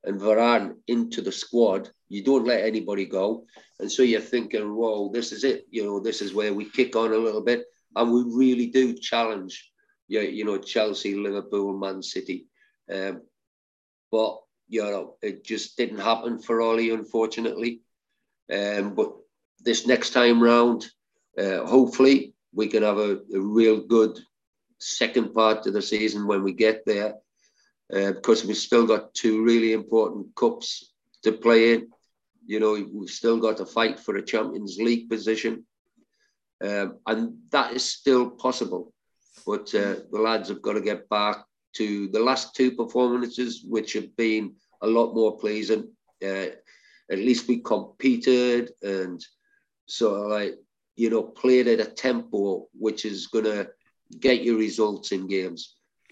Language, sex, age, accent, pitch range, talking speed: English, male, 50-69, British, 105-120 Hz, 160 wpm